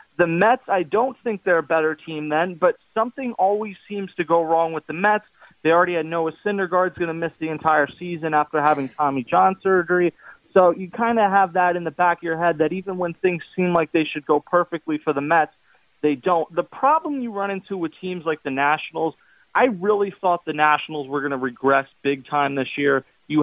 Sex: male